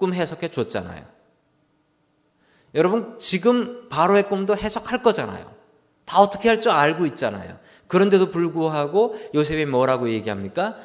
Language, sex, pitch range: Korean, male, 145-200 Hz